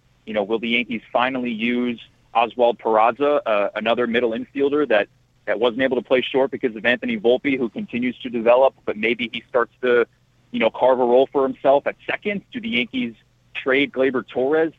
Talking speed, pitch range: 195 wpm, 115-140 Hz